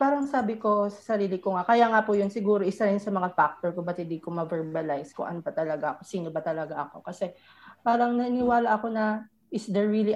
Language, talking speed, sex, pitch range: Filipino, 230 wpm, female, 190-245 Hz